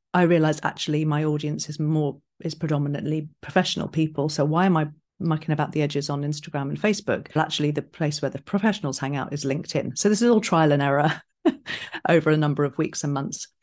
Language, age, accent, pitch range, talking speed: English, 40-59, British, 145-170 Hz, 205 wpm